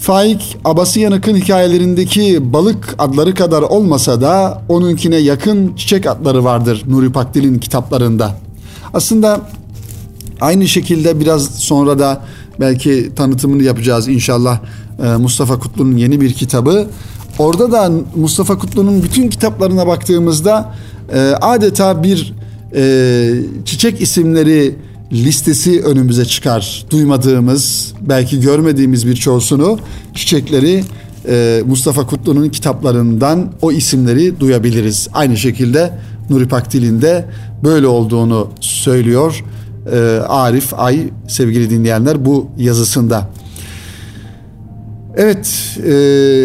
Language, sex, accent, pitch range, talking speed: Turkish, male, native, 115-165 Hz, 90 wpm